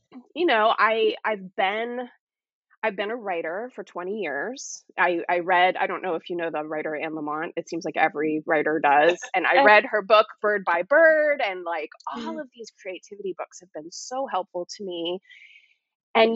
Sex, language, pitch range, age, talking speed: female, English, 170-250 Hz, 30-49, 195 wpm